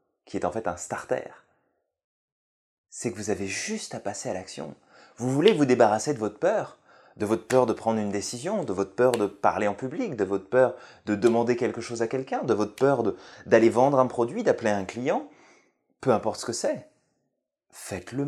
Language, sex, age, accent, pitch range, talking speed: French, male, 20-39, French, 105-150 Hz, 205 wpm